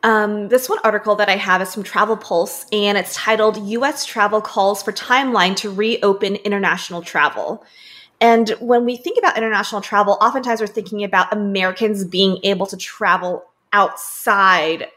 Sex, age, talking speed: female, 20-39, 160 wpm